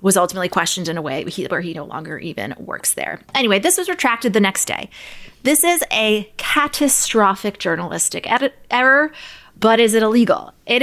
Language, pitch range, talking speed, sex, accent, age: English, 175-235 Hz, 170 wpm, female, American, 20-39